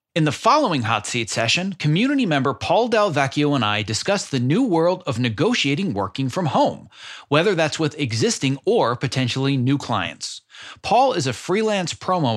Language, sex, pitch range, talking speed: English, male, 125-170 Hz, 165 wpm